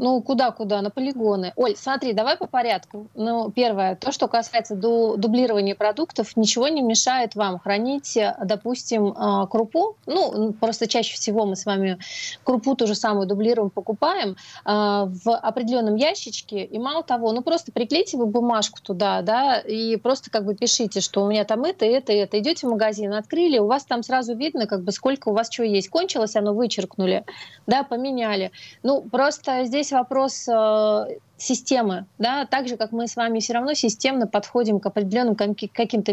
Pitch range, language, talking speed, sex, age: 210-255 Hz, Russian, 170 wpm, female, 30-49